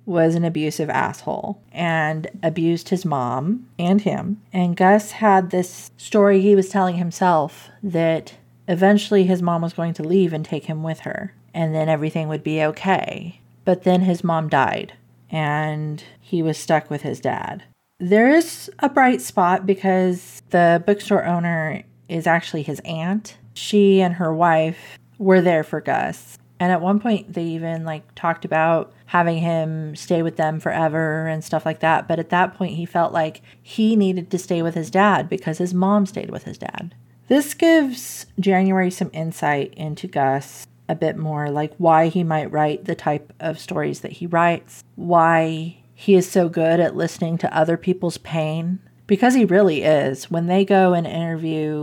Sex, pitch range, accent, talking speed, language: female, 155-185 Hz, American, 175 wpm, English